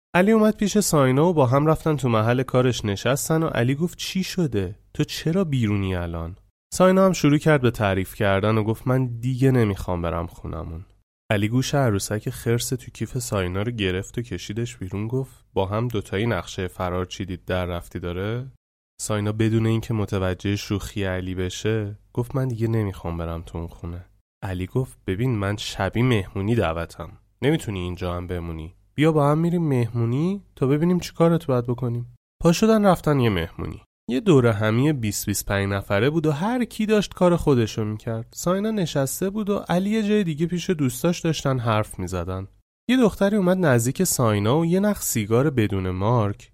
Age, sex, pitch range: 20-39, male, 100-155 Hz